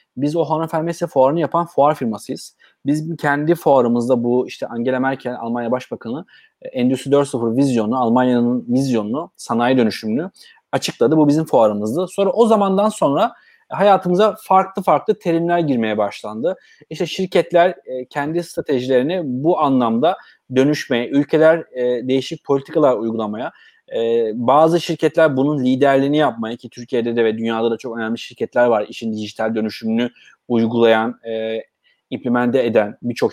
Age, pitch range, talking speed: 30-49, 125-180 Hz, 125 wpm